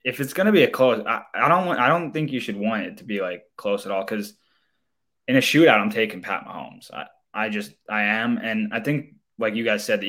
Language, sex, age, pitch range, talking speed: English, male, 20-39, 105-130 Hz, 270 wpm